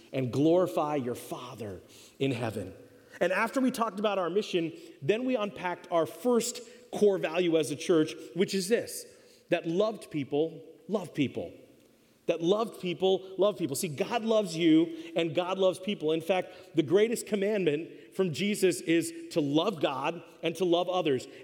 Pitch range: 160-220 Hz